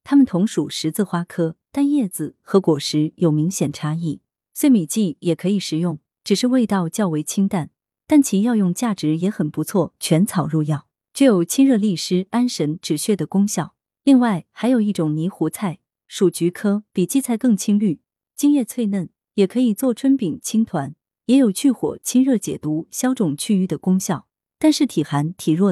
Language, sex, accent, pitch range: Chinese, female, native, 160-235 Hz